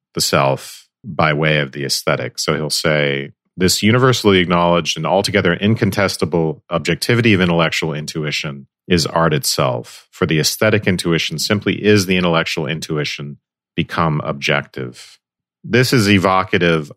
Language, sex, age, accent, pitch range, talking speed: English, male, 40-59, American, 75-100 Hz, 130 wpm